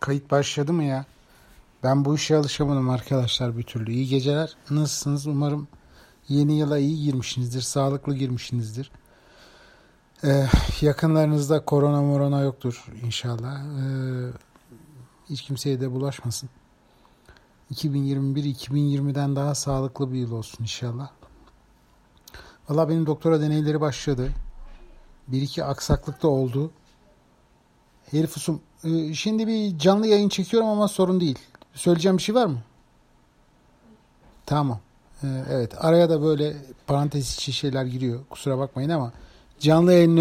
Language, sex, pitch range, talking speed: Turkish, male, 130-155 Hz, 115 wpm